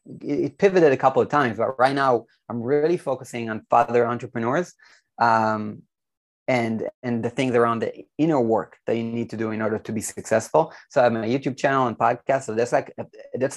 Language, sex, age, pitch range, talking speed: English, male, 20-39, 115-135 Hz, 205 wpm